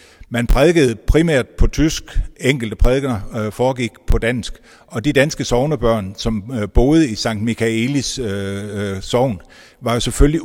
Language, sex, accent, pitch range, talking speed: Danish, male, native, 105-130 Hz, 145 wpm